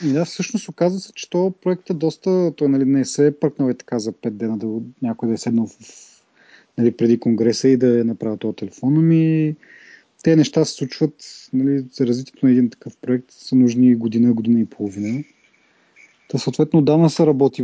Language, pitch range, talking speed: Bulgarian, 115-135 Hz, 195 wpm